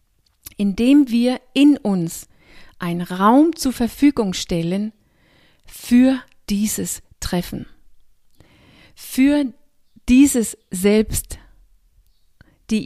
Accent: German